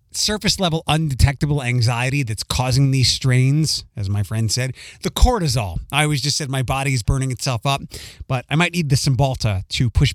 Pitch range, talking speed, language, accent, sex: 110-150 Hz, 190 wpm, English, American, male